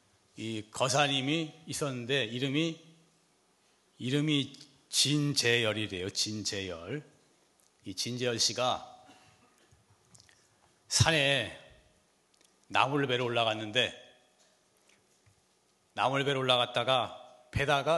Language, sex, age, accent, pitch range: Korean, male, 40-59, native, 120-165 Hz